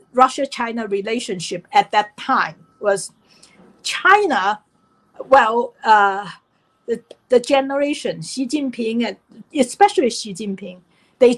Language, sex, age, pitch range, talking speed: English, female, 50-69, 210-280 Hz, 95 wpm